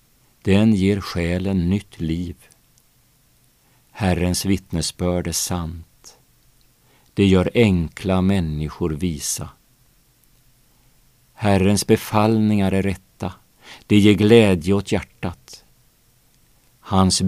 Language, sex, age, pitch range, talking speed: Swedish, male, 50-69, 90-115 Hz, 85 wpm